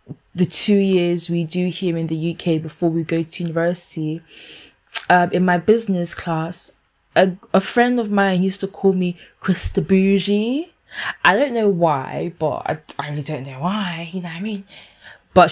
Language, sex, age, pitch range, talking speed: English, female, 20-39, 165-205 Hz, 180 wpm